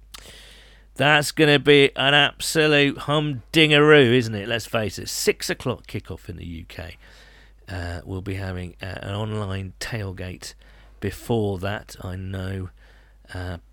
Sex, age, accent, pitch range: male, 40-59, British, 95-130 Hz